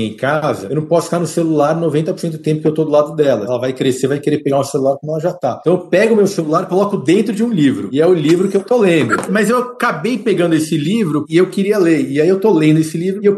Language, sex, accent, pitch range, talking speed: Portuguese, male, Brazilian, 125-170 Hz, 300 wpm